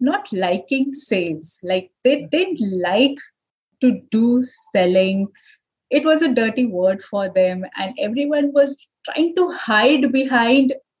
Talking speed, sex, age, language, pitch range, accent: 130 wpm, female, 20-39, English, 175-240 Hz, Indian